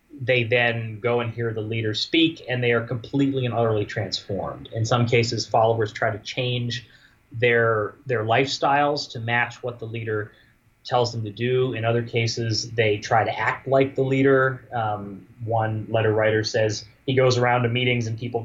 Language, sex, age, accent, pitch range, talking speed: English, male, 30-49, American, 110-130 Hz, 180 wpm